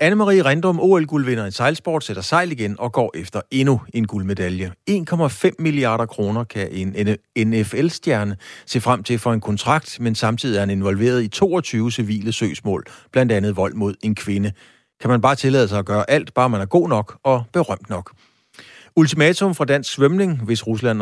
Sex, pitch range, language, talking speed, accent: male, 100-140 Hz, Danish, 180 wpm, native